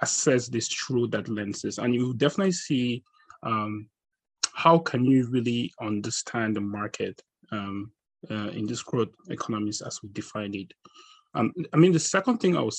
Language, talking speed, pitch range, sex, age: English, 165 wpm, 110-130 Hz, male, 20-39